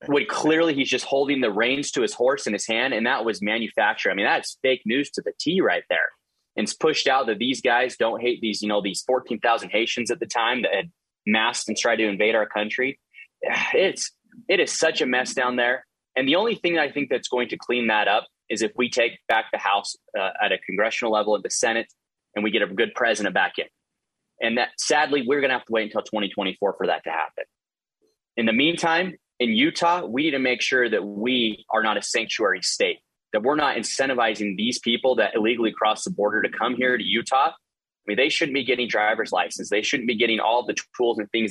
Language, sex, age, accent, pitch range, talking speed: English, male, 20-39, American, 110-150 Hz, 240 wpm